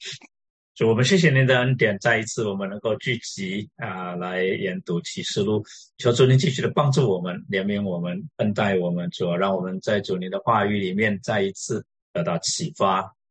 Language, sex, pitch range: Chinese, male, 95-130 Hz